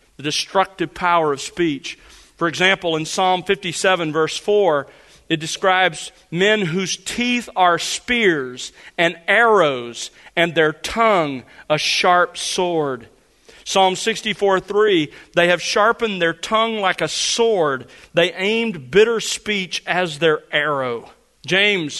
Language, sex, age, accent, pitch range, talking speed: English, male, 40-59, American, 160-205 Hz, 125 wpm